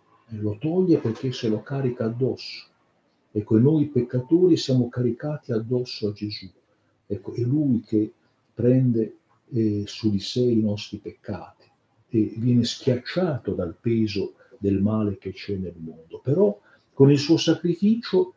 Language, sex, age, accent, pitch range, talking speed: Italian, male, 50-69, native, 105-130 Hz, 145 wpm